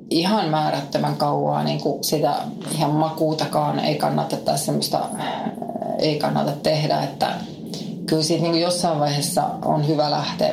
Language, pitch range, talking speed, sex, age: Finnish, 155-205 Hz, 120 wpm, female, 30-49